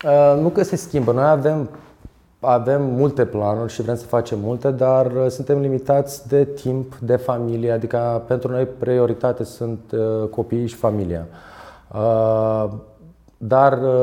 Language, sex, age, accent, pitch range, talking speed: Romanian, male, 20-39, native, 105-125 Hz, 130 wpm